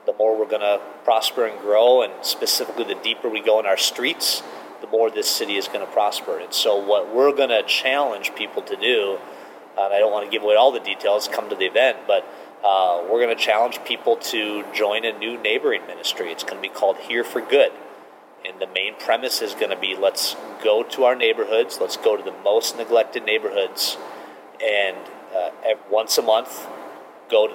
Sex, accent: male, American